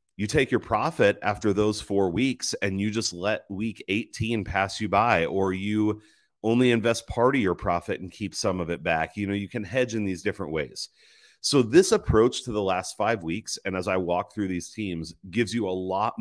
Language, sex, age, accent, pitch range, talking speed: English, male, 30-49, American, 90-115 Hz, 220 wpm